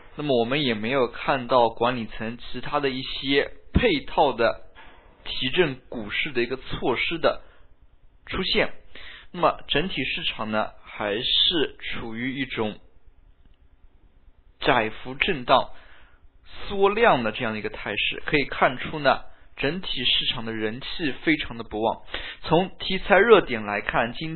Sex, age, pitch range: male, 20-39, 110-150 Hz